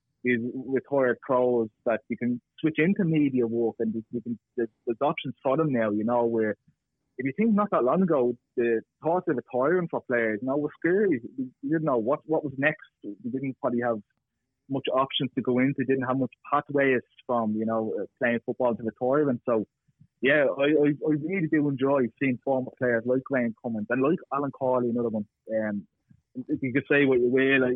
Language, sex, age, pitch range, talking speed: English, male, 20-39, 115-135 Hz, 200 wpm